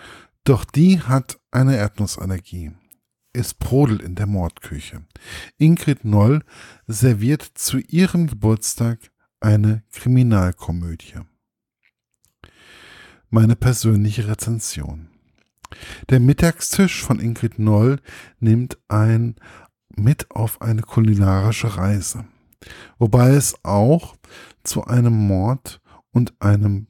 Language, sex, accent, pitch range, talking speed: German, male, German, 105-130 Hz, 90 wpm